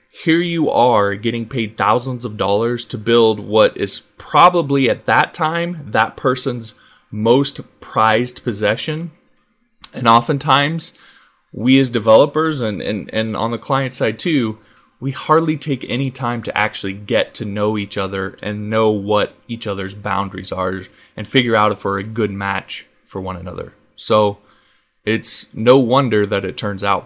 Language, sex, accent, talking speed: English, male, American, 155 wpm